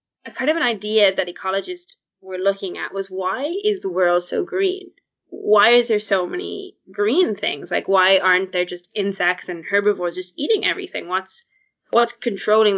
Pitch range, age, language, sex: 185-295 Hz, 20-39, English, female